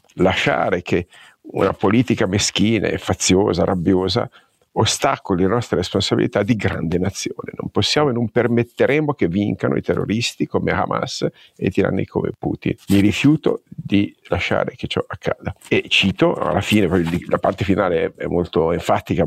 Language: Italian